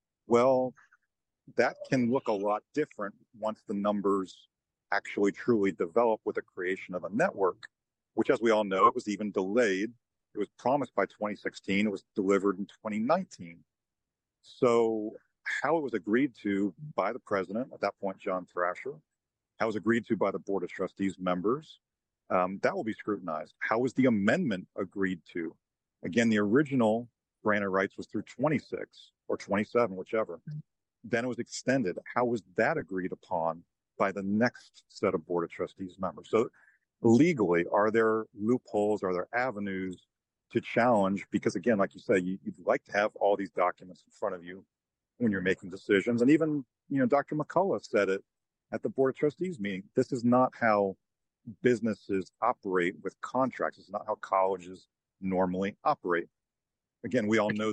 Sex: male